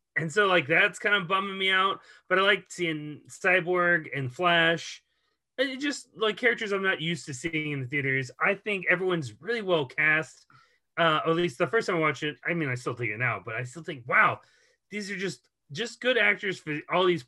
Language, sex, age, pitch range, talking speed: English, male, 30-49, 150-195 Hz, 220 wpm